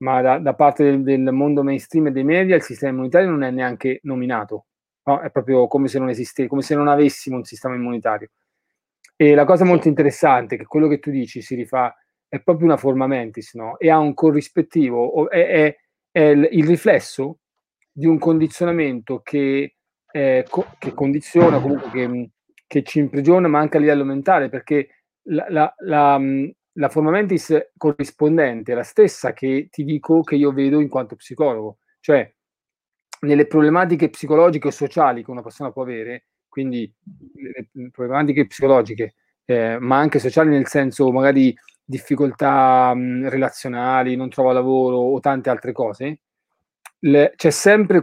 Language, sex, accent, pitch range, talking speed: Italian, male, native, 130-155 Hz, 165 wpm